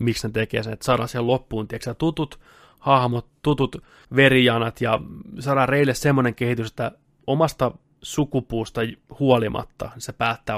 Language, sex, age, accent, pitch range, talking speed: Finnish, male, 20-39, native, 115-135 Hz, 135 wpm